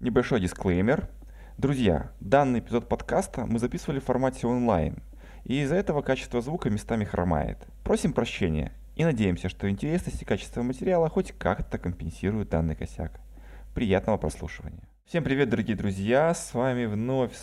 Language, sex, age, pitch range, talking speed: Russian, male, 20-39, 100-120 Hz, 140 wpm